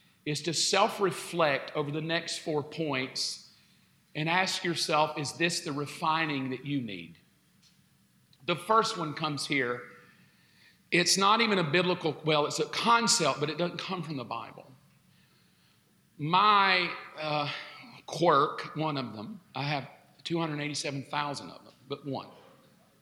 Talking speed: 135 wpm